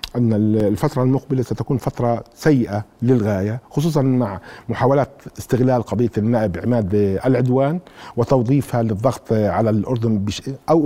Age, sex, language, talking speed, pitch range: 50-69, male, Arabic, 110 wpm, 120-145 Hz